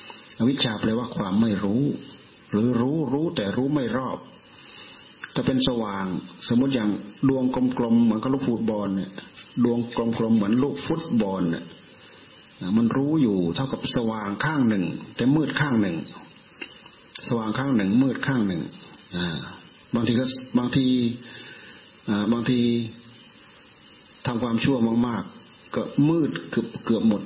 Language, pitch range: Thai, 100-130 Hz